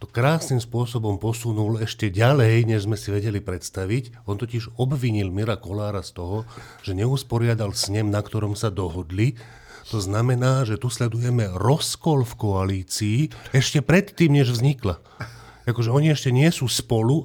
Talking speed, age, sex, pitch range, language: 150 wpm, 40-59, male, 95-115 Hz, Slovak